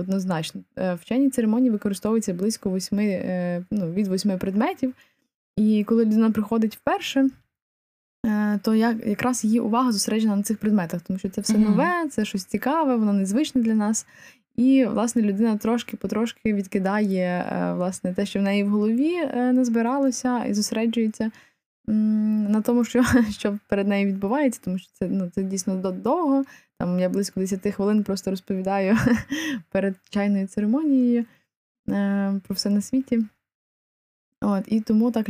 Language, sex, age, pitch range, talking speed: Ukrainian, female, 20-39, 195-230 Hz, 140 wpm